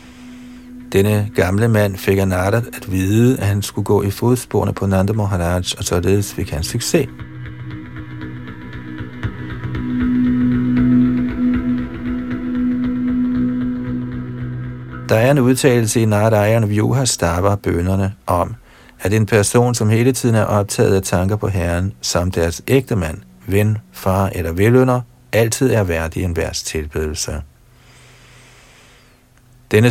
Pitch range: 95-125 Hz